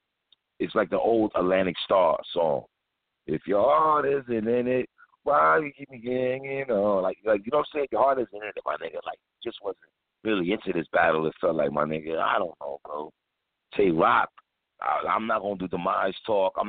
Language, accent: English, American